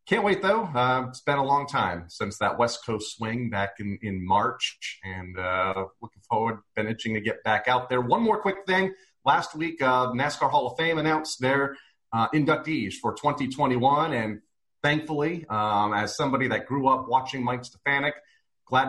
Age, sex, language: 30-49, male, English